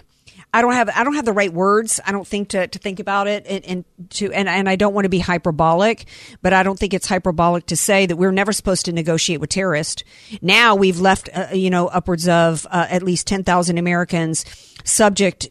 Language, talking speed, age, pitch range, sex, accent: English, 230 wpm, 50-69, 160-190 Hz, female, American